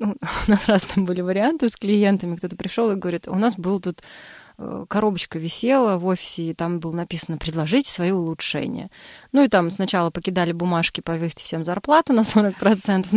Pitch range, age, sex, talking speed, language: 175-225 Hz, 20-39, female, 180 wpm, Russian